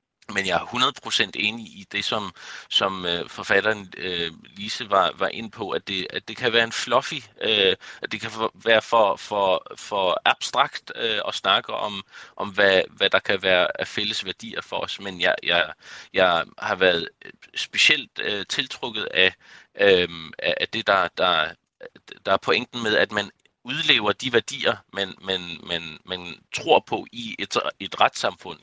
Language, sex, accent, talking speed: Danish, male, native, 155 wpm